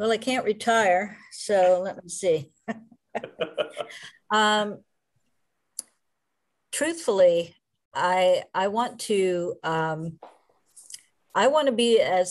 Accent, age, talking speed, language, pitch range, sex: American, 50-69, 95 wpm, English, 155-190 Hz, female